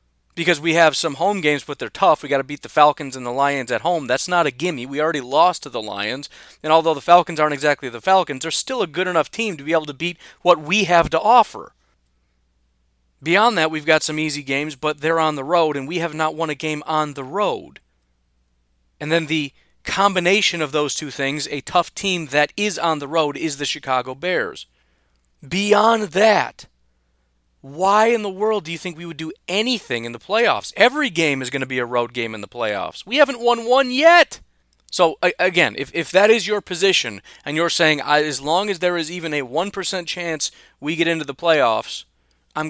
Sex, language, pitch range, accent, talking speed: male, English, 130-180 Hz, American, 220 wpm